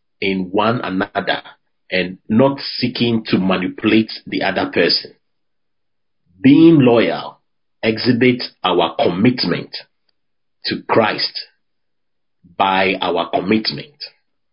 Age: 40-59